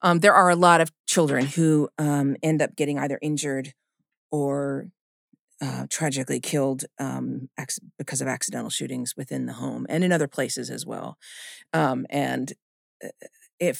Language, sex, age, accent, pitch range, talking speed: English, female, 40-59, American, 150-215 Hz, 150 wpm